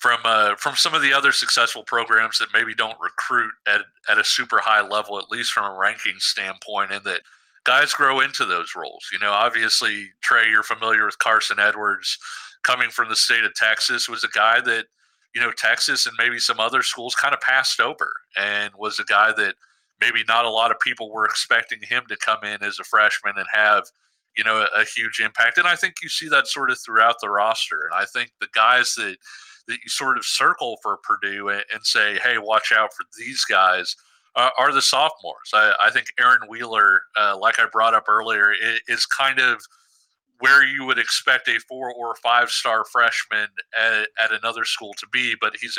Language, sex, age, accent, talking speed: English, male, 40-59, American, 205 wpm